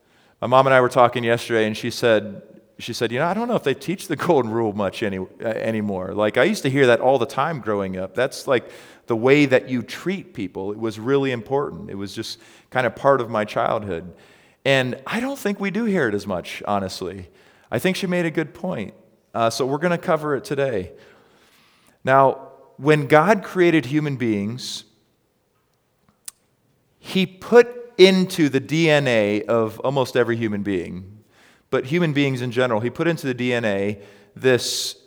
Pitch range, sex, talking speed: 115-155 Hz, male, 190 wpm